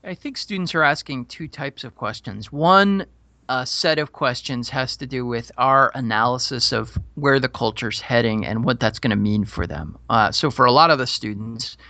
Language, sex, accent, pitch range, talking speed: English, male, American, 120-160 Hz, 205 wpm